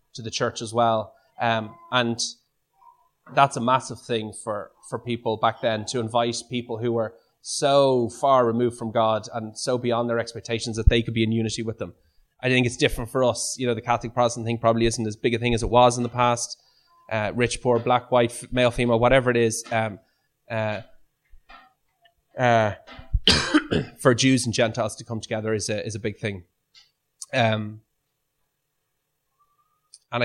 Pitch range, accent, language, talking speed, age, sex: 115-130 Hz, Irish, English, 175 wpm, 20-39, male